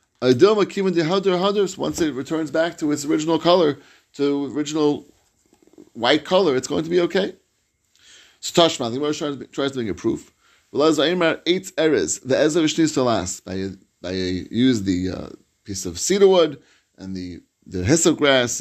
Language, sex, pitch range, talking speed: English, male, 120-170 Hz, 160 wpm